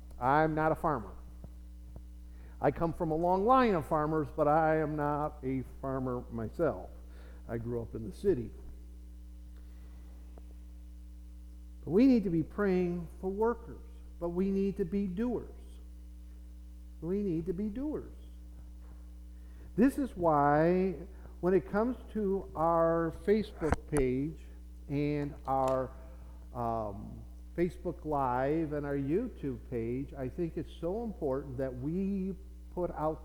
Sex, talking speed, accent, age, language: male, 130 wpm, American, 50-69, English